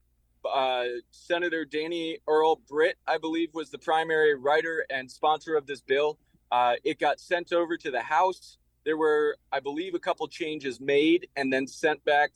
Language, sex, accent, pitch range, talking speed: English, male, American, 120-175 Hz, 175 wpm